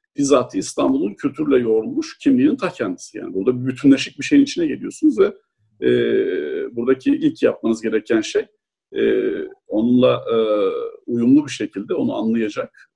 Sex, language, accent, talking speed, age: male, Turkish, native, 140 wpm, 50-69